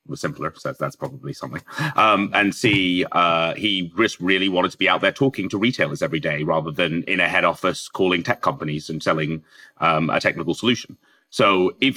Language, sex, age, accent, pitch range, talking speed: English, male, 30-49, British, 90-125 Hz, 195 wpm